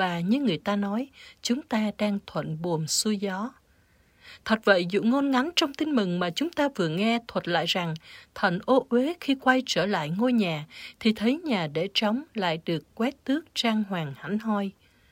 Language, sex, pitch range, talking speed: Vietnamese, female, 190-265 Hz, 200 wpm